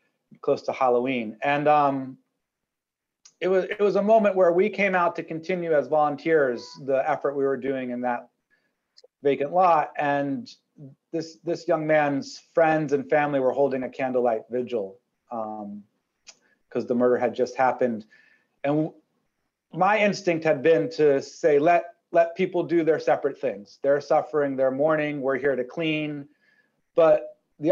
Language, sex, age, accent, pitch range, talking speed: English, male, 30-49, American, 130-165 Hz, 160 wpm